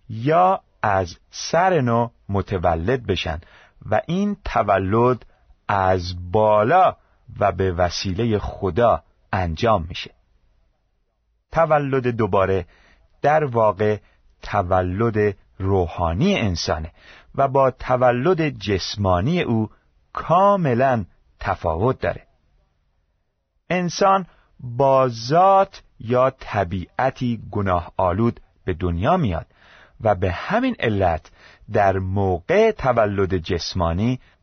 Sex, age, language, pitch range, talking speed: male, 40-59, Persian, 90-130 Hz, 85 wpm